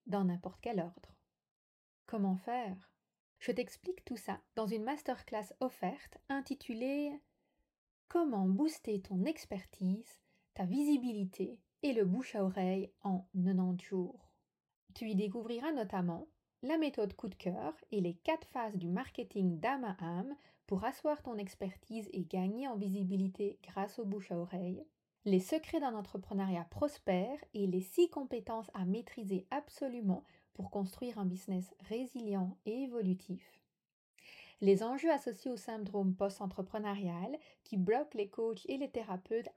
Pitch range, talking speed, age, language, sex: 190-250 Hz, 135 wpm, 30-49, French, female